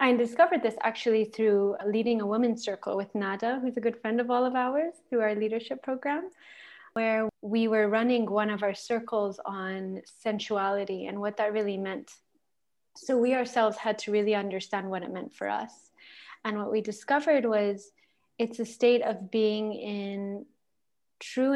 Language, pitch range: English, 205-245 Hz